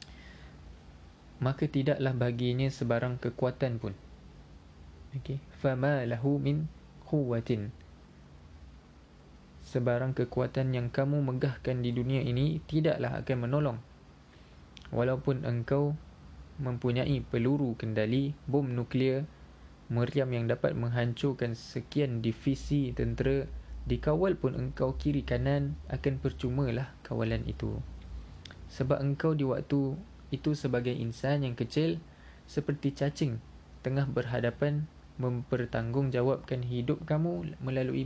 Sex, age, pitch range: male, 20-39, 115-140 Hz